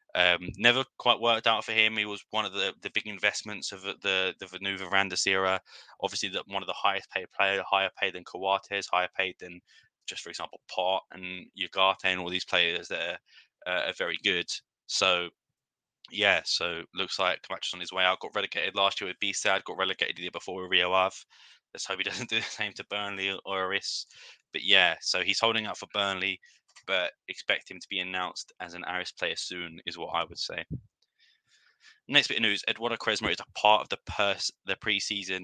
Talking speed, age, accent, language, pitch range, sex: 215 wpm, 20-39, British, English, 90-100 Hz, male